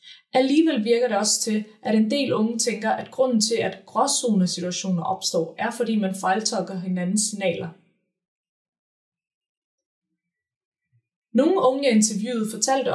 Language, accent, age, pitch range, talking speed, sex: Danish, native, 20-39, 185-240 Hz, 125 wpm, female